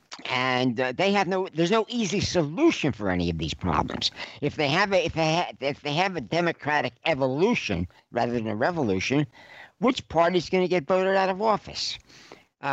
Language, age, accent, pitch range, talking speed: English, 60-79, American, 115-160 Hz, 195 wpm